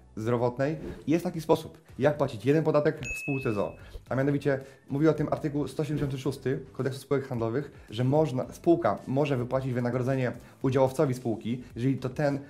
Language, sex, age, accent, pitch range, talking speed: Polish, male, 30-49, native, 120-145 Hz, 155 wpm